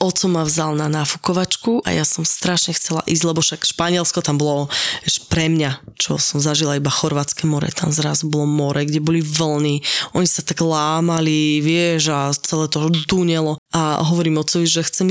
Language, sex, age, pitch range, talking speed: Slovak, female, 20-39, 155-180 Hz, 180 wpm